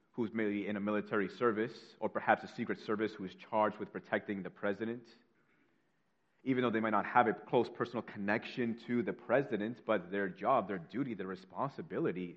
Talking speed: 180 wpm